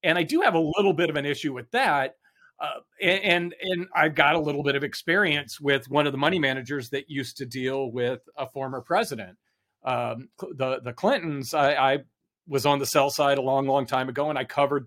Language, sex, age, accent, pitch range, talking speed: English, male, 40-59, American, 135-160 Hz, 220 wpm